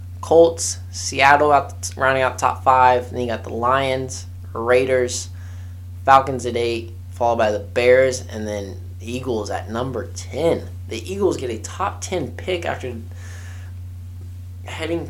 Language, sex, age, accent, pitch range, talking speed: English, male, 20-39, American, 90-120 Hz, 135 wpm